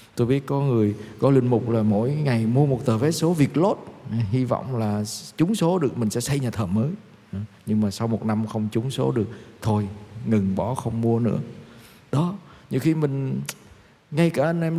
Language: Vietnamese